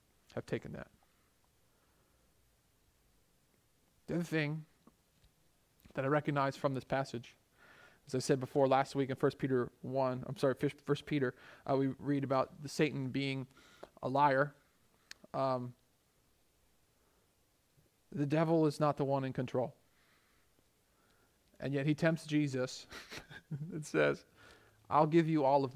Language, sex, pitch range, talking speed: English, male, 130-155 Hz, 130 wpm